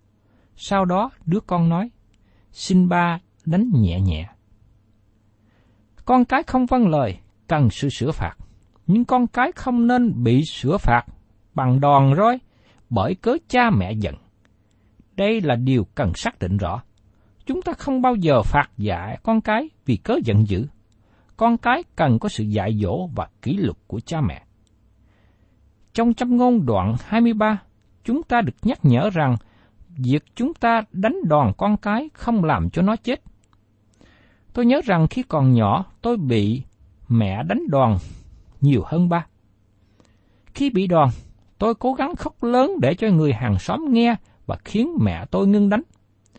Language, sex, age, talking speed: Vietnamese, male, 60-79, 160 wpm